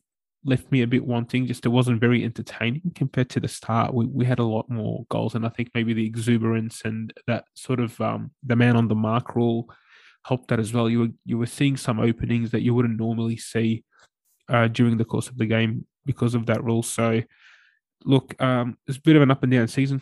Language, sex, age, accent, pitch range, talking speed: English, male, 20-39, Australian, 110-120 Hz, 230 wpm